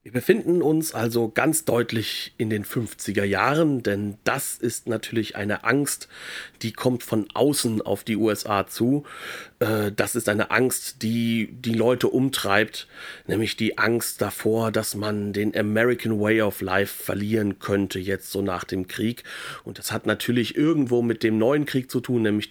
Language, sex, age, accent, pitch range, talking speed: German, male, 40-59, German, 105-140 Hz, 165 wpm